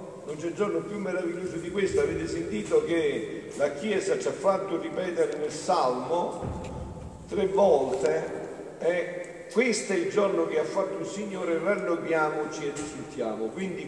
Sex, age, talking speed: male, 50-69, 150 wpm